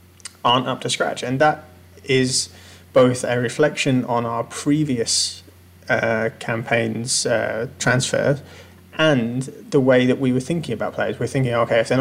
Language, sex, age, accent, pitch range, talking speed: English, male, 30-49, British, 110-130 Hz, 155 wpm